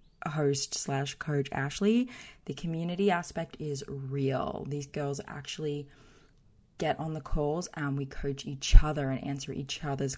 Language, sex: English, female